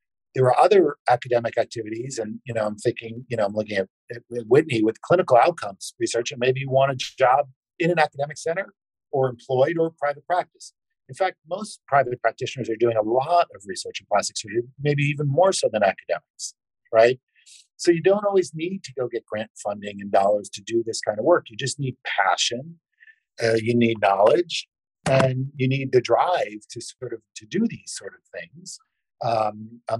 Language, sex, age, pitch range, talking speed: English, male, 50-69, 115-175 Hz, 195 wpm